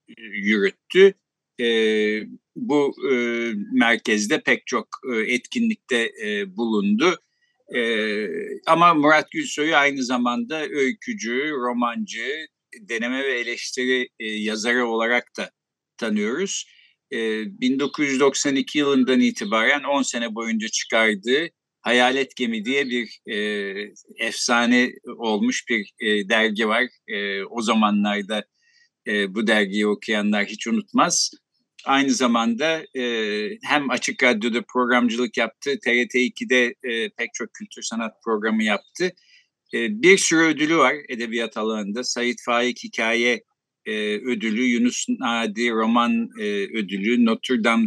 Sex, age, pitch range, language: male, 50-69, 110-150 Hz, Turkish